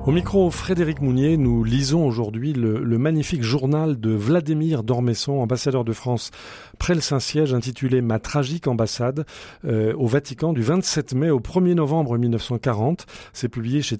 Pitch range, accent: 115-155 Hz, French